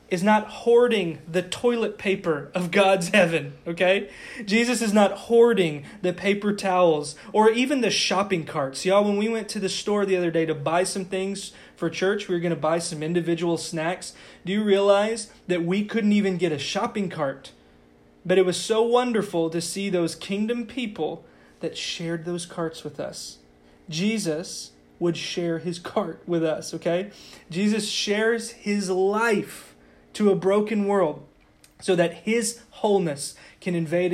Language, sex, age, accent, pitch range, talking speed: English, male, 20-39, American, 165-215 Hz, 165 wpm